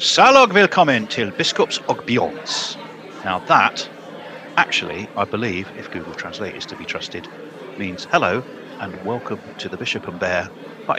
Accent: British